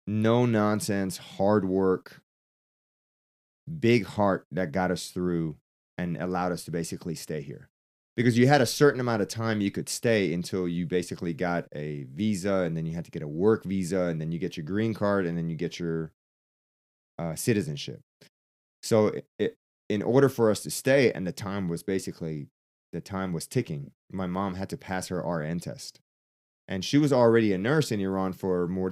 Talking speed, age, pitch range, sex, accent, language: 190 wpm, 30-49, 85-110 Hz, male, American, English